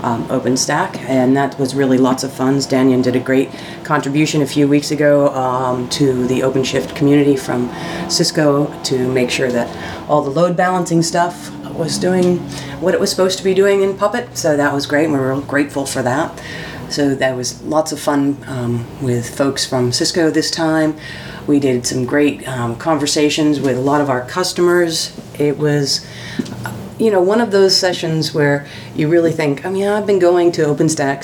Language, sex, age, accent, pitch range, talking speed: English, female, 40-59, American, 130-160 Hz, 195 wpm